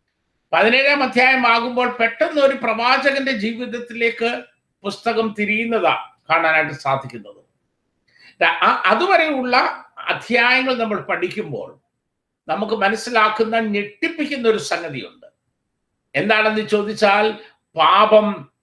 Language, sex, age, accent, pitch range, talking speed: Malayalam, male, 50-69, native, 205-245 Hz, 75 wpm